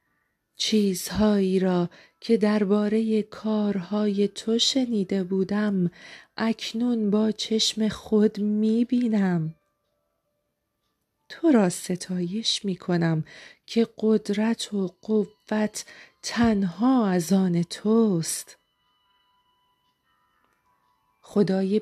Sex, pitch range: female, 185-220 Hz